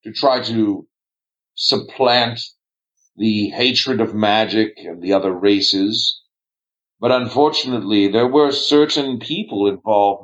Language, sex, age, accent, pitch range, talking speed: English, male, 50-69, American, 105-135 Hz, 110 wpm